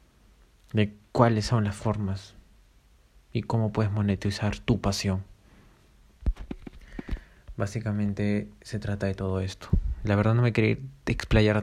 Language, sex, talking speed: Spanish, male, 120 wpm